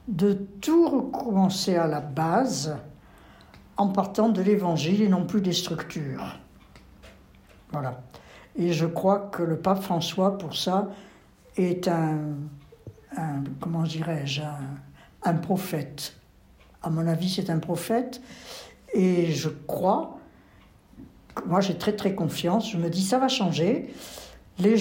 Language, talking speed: French, 130 wpm